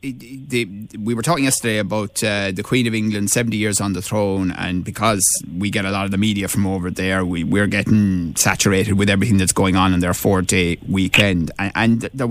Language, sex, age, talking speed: English, male, 30-49, 205 wpm